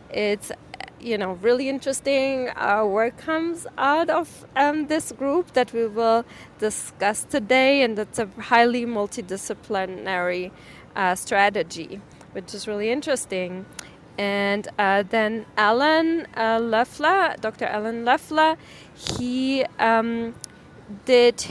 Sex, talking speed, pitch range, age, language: female, 115 wpm, 210-260 Hz, 20-39, English